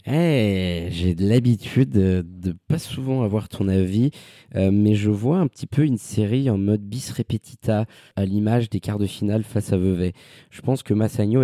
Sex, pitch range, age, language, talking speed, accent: male, 100-125 Hz, 20-39, French, 195 wpm, French